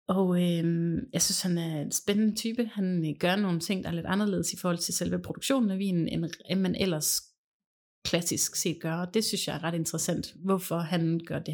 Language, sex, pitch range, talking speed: Danish, female, 170-210 Hz, 220 wpm